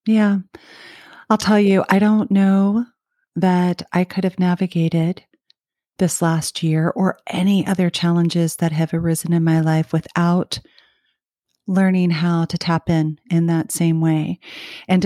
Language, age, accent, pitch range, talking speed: English, 40-59, American, 165-185 Hz, 145 wpm